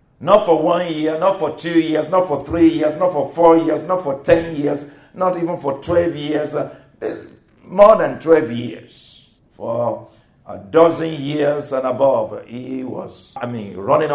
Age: 50-69